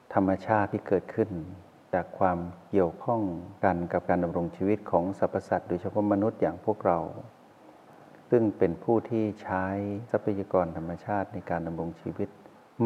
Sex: male